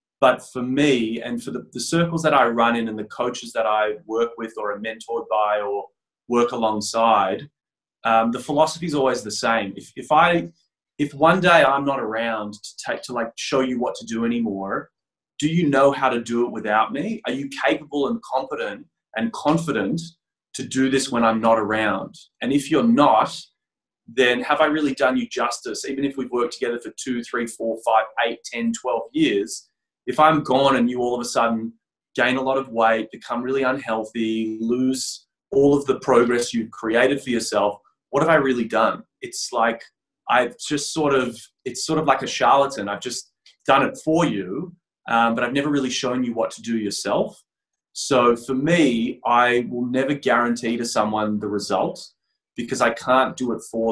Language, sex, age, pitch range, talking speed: English, male, 20-39, 115-140 Hz, 195 wpm